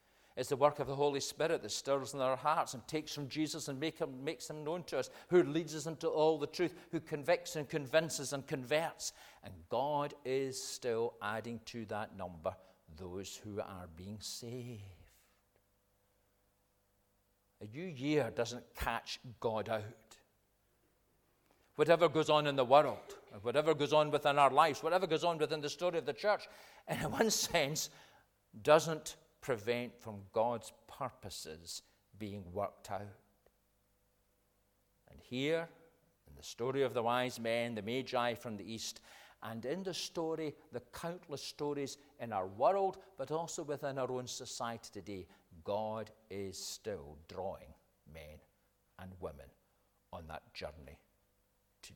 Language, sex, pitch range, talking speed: English, male, 100-150 Hz, 150 wpm